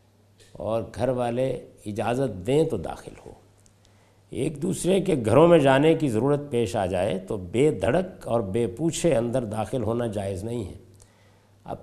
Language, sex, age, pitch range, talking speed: Urdu, male, 50-69, 100-140 Hz, 160 wpm